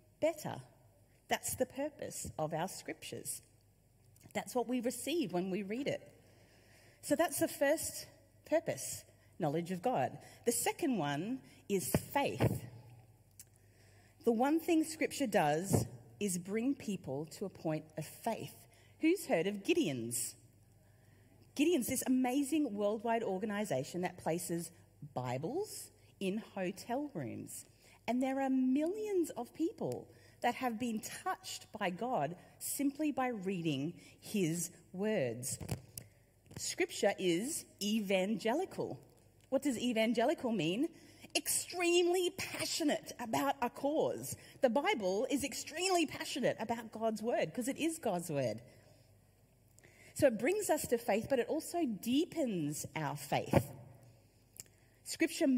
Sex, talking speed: female, 120 wpm